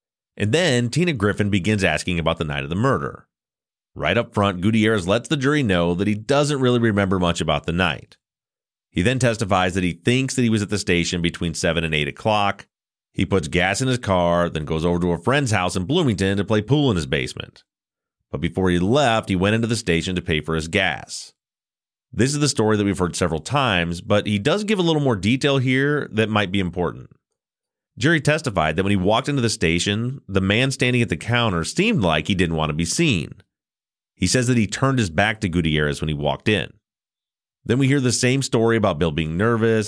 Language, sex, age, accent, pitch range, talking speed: English, male, 30-49, American, 90-125 Hz, 225 wpm